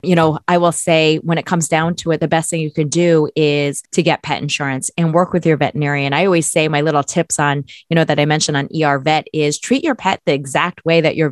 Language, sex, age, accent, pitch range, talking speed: English, female, 20-39, American, 150-180 Hz, 270 wpm